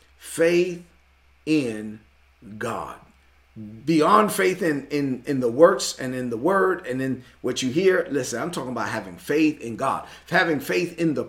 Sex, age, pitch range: male, 40-59, 130-185 Hz